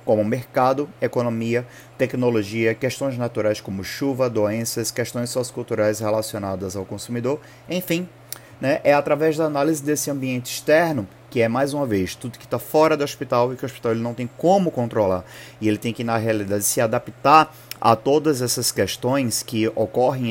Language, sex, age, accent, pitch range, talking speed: Portuguese, male, 30-49, Brazilian, 115-145 Hz, 165 wpm